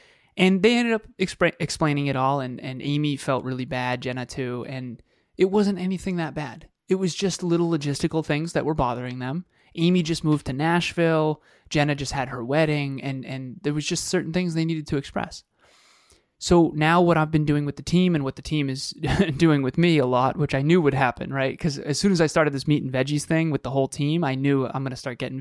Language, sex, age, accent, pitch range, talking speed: English, male, 20-39, American, 135-165 Hz, 235 wpm